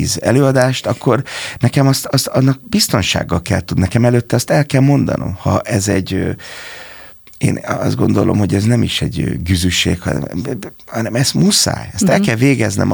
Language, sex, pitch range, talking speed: Hungarian, male, 95-130 Hz, 160 wpm